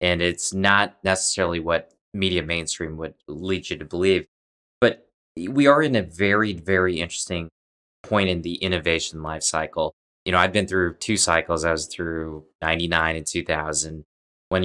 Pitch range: 80-90 Hz